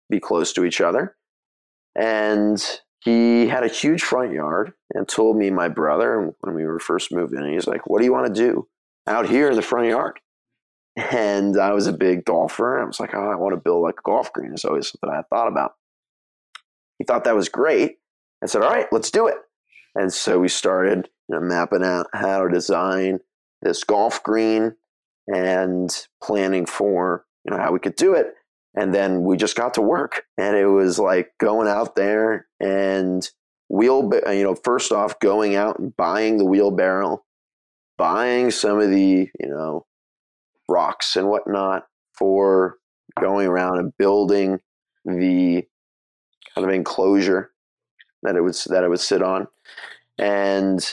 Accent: American